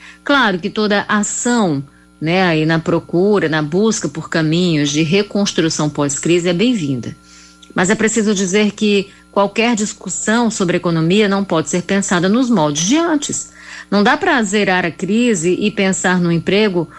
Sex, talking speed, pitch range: female, 155 wpm, 170-225 Hz